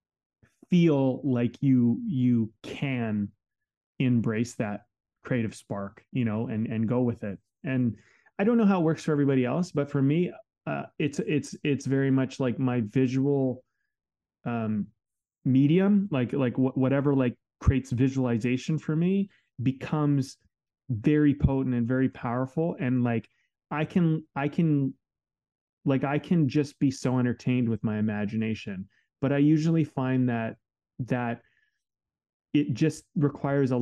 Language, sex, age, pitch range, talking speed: English, male, 30-49, 120-145 Hz, 145 wpm